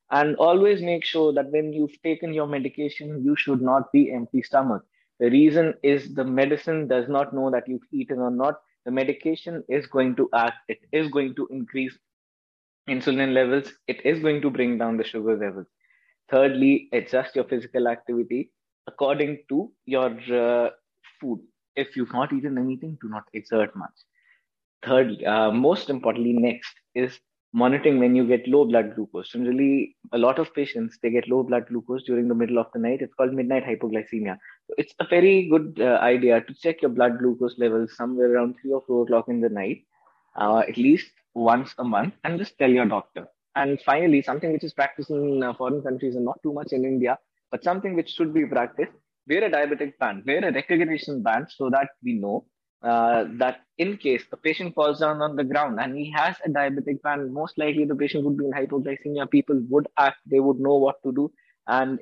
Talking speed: 200 wpm